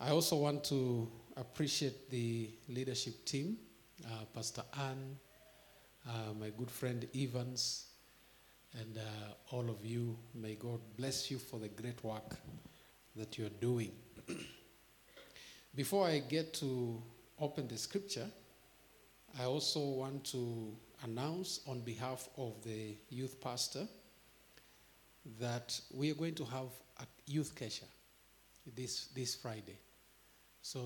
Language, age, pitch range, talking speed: English, 50-69, 115-135 Hz, 120 wpm